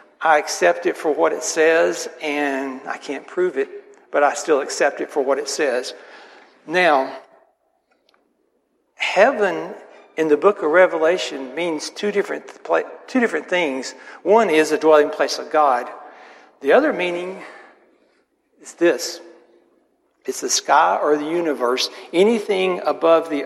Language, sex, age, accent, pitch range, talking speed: English, male, 60-79, American, 145-215 Hz, 140 wpm